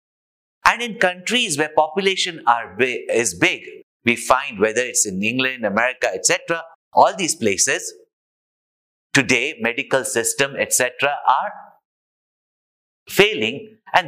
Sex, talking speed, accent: male, 105 wpm, Indian